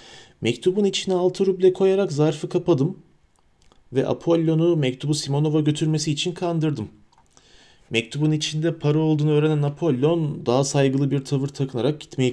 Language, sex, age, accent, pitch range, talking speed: Turkish, male, 40-59, native, 100-140 Hz, 125 wpm